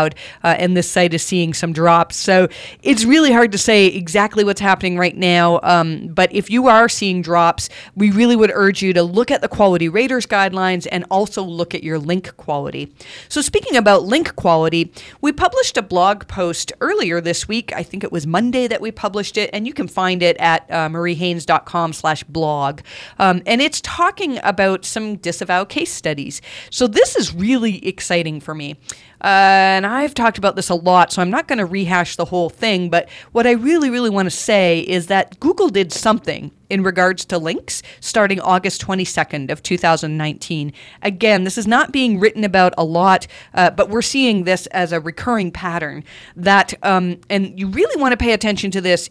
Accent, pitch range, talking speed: American, 175-225 Hz, 195 wpm